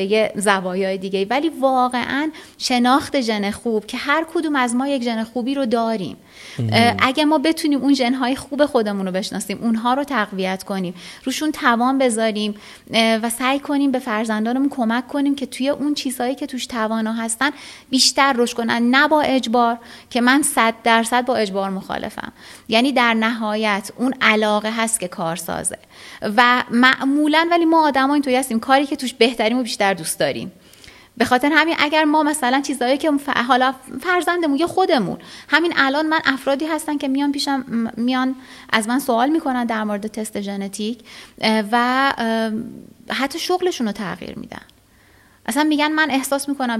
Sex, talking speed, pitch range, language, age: female, 160 wpm, 225-280 Hz, Persian, 30-49